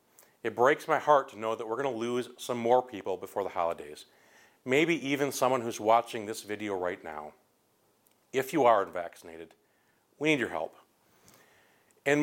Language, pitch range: English, 105-140 Hz